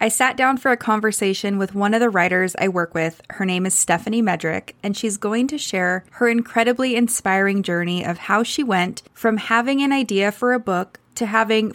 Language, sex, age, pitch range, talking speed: English, female, 20-39, 185-230 Hz, 210 wpm